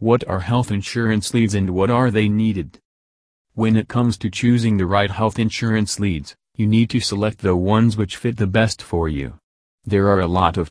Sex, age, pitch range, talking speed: male, 40-59, 95-115 Hz, 205 wpm